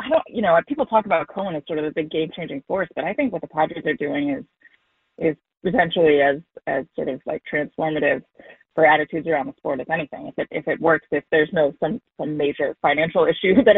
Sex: female